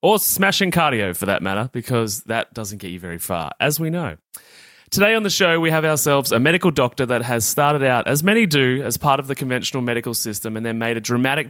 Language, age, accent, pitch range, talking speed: English, 30-49, Australian, 115-150 Hz, 235 wpm